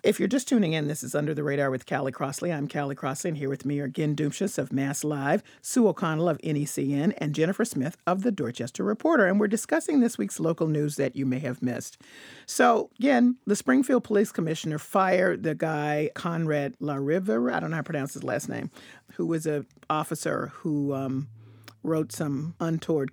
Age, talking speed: 50-69, 205 wpm